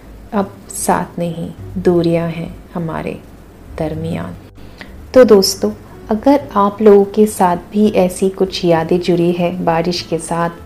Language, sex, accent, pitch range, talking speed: Hindi, female, native, 170-205 Hz, 130 wpm